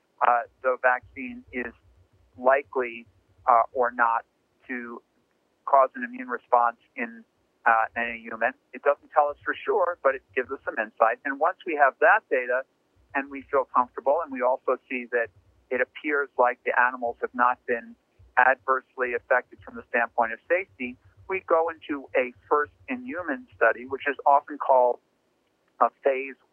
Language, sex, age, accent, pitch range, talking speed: English, male, 50-69, American, 120-150 Hz, 165 wpm